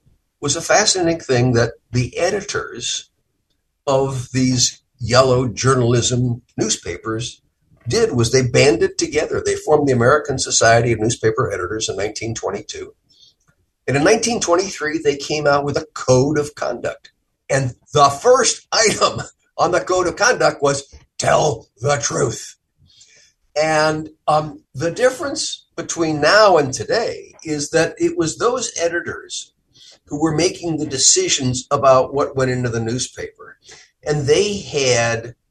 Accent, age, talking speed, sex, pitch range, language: American, 50-69, 135 wpm, male, 125-170 Hz, English